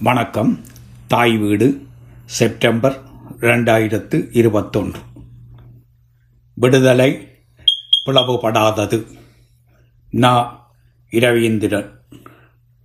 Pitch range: 120-140 Hz